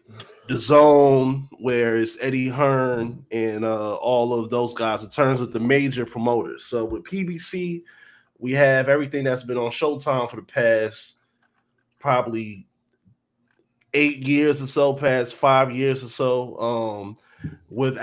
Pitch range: 120-160 Hz